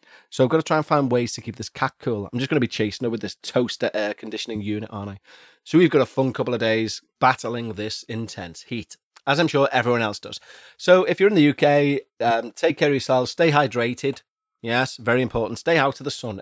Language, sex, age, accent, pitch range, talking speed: English, male, 30-49, British, 115-165 Hz, 245 wpm